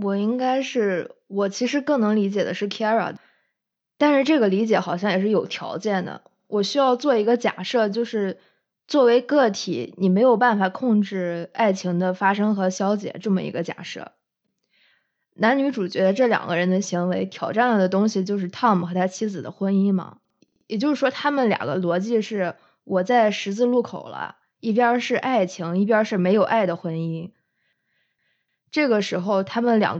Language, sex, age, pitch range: Chinese, female, 20-39, 190-240 Hz